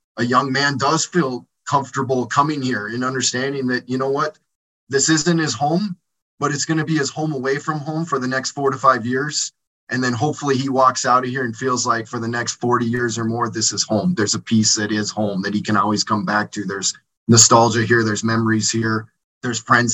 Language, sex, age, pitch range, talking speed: English, male, 30-49, 115-135 Hz, 230 wpm